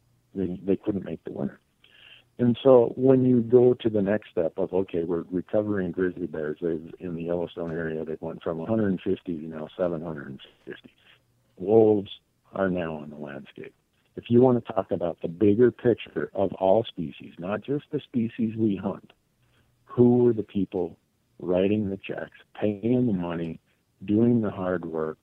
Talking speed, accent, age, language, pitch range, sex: 170 wpm, American, 60-79, English, 85-115 Hz, male